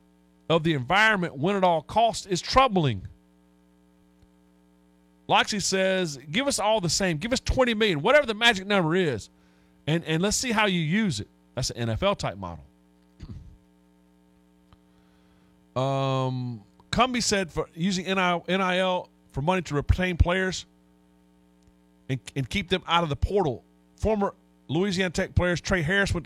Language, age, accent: English, 40-59, American